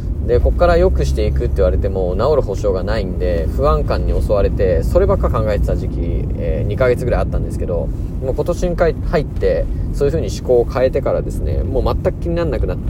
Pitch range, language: 80-100 Hz, Japanese